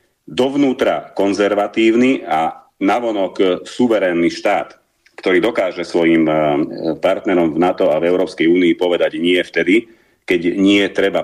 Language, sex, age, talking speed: Slovak, male, 40-59, 115 wpm